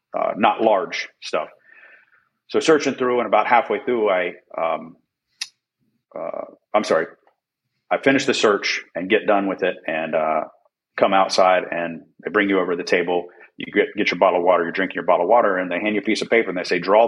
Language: English